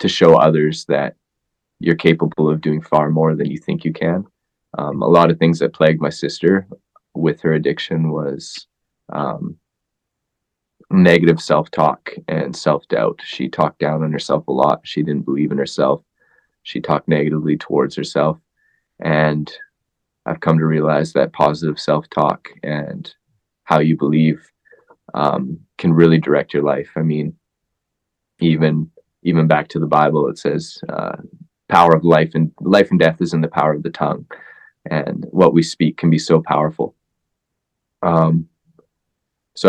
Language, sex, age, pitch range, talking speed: English, male, 20-39, 75-80 Hz, 155 wpm